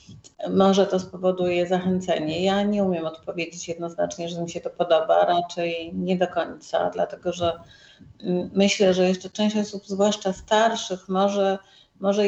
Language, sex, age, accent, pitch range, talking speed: Polish, female, 40-59, native, 180-195 Hz, 140 wpm